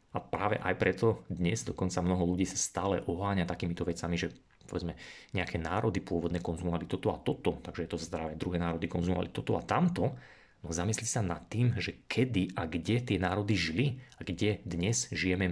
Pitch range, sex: 90-110 Hz, male